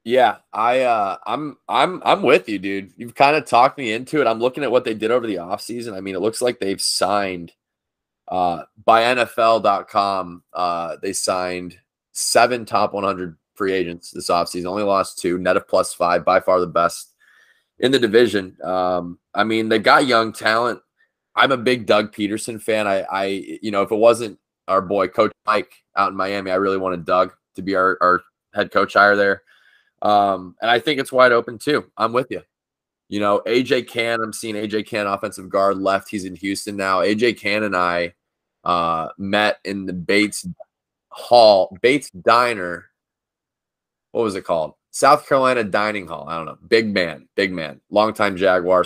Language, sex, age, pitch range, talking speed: English, male, 20-39, 95-110 Hz, 190 wpm